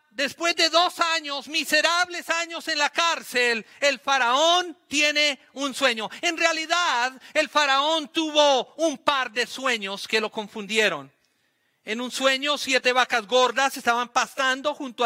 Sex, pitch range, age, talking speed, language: male, 260-325 Hz, 40-59, 140 wpm, Spanish